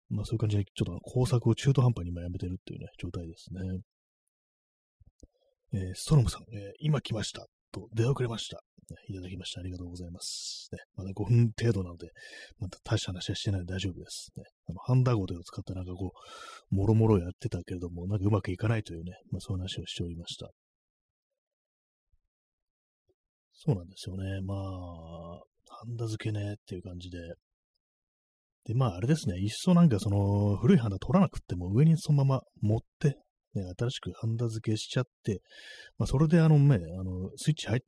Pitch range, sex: 90-120 Hz, male